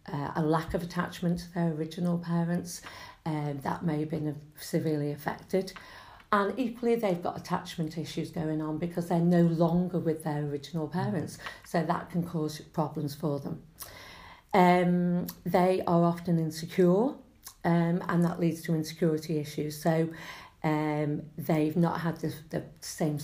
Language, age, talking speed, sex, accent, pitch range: English, 50-69, 155 wpm, female, British, 155-175 Hz